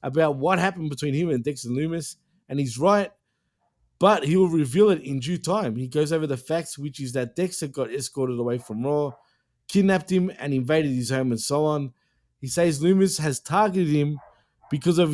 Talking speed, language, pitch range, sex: 200 wpm, English, 135-175 Hz, male